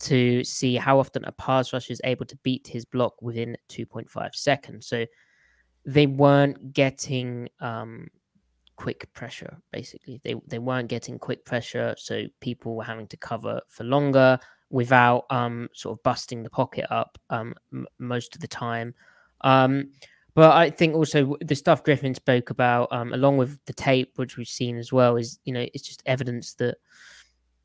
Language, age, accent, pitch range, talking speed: English, 20-39, British, 125-145 Hz, 170 wpm